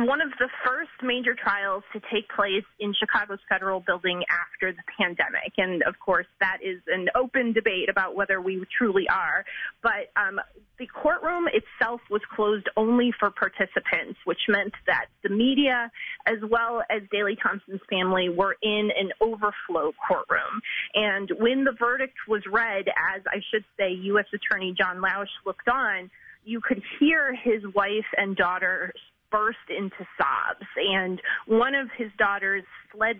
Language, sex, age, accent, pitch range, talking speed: English, female, 30-49, American, 195-230 Hz, 155 wpm